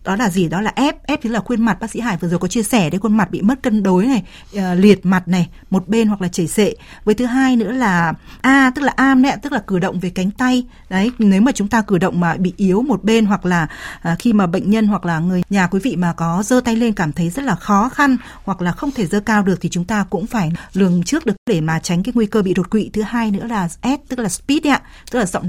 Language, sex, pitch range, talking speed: Vietnamese, female, 180-225 Hz, 295 wpm